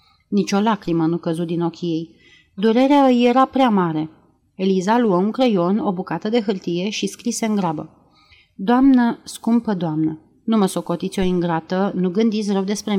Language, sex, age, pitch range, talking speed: Romanian, female, 30-49, 175-225 Hz, 170 wpm